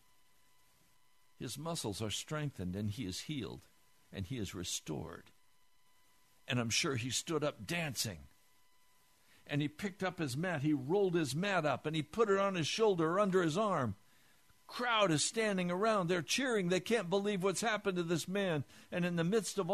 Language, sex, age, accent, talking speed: English, male, 60-79, American, 180 wpm